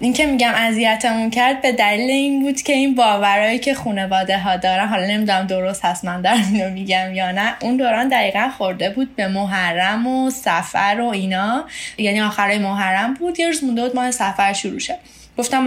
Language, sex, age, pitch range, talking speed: Persian, female, 10-29, 190-235 Hz, 185 wpm